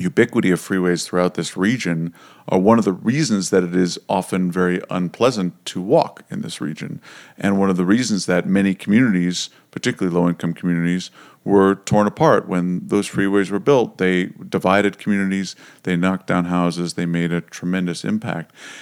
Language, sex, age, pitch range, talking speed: English, male, 40-59, 90-105 Hz, 170 wpm